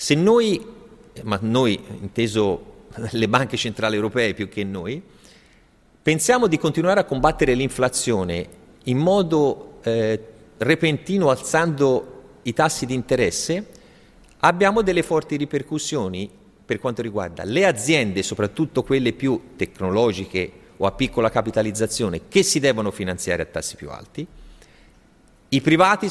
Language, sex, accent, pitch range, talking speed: Italian, male, native, 115-165 Hz, 125 wpm